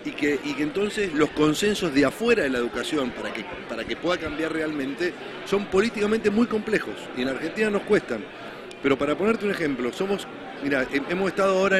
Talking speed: 195 wpm